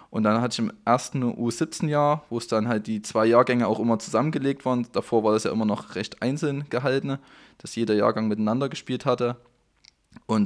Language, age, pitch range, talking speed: German, 20-39, 115-145 Hz, 195 wpm